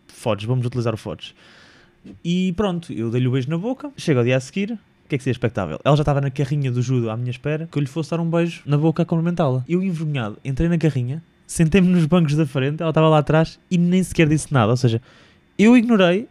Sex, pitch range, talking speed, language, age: male, 130-185 Hz, 255 wpm, Portuguese, 20-39